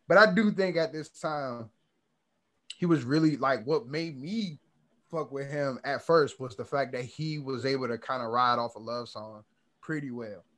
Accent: American